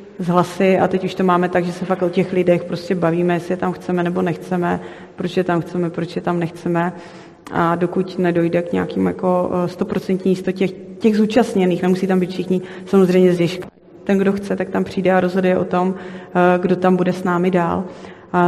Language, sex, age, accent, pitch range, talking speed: Czech, female, 30-49, native, 180-200 Hz, 200 wpm